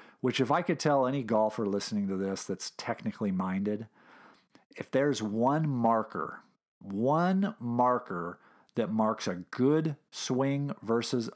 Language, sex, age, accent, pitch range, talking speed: English, male, 50-69, American, 105-140 Hz, 130 wpm